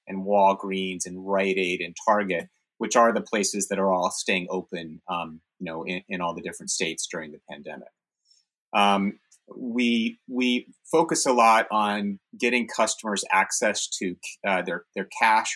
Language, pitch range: English, 100-135 Hz